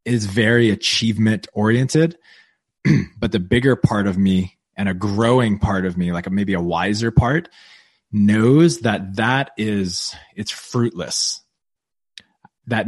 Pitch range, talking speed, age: 105-125 Hz, 130 wpm, 20-39